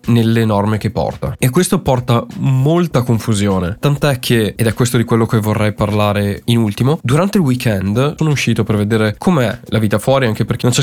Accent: native